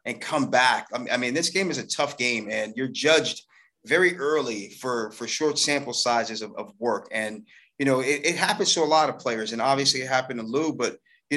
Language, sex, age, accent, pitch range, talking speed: English, male, 30-49, American, 120-145 Hz, 225 wpm